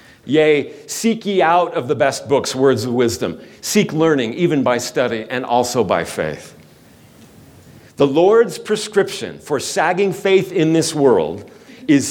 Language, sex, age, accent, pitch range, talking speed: English, male, 50-69, American, 140-195 Hz, 150 wpm